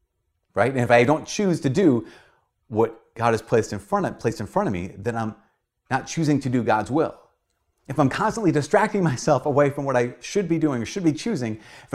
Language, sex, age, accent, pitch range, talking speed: English, male, 30-49, American, 110-150 Hz, 225 wpm